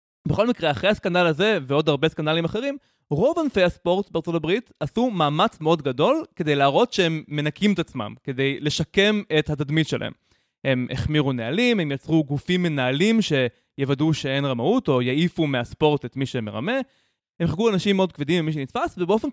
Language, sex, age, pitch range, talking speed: Hebrew, male, 20-39, 140-200 Hz, 165 wpm